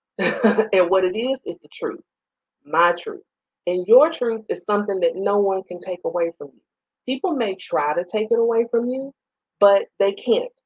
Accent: American